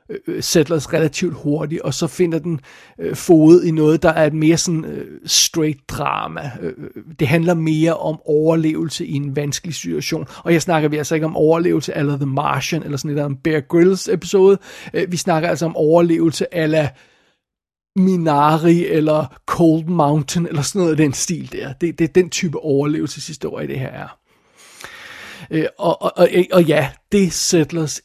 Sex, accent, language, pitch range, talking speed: male, native, Danish, 150-170 Hz, 175 wpm